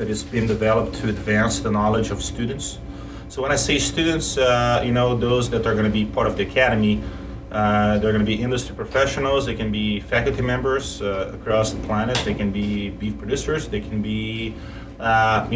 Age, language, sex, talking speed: 30-49, English, male, 195 wpm